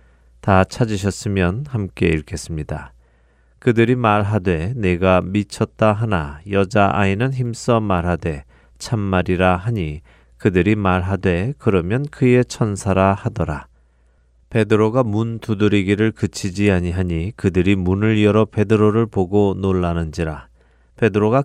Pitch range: 85-110 Hz